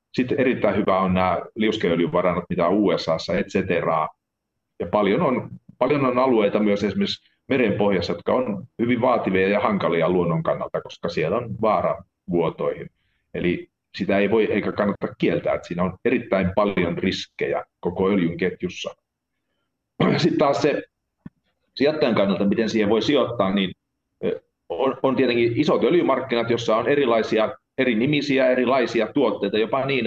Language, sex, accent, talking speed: Finnish, male, native, 145 wpm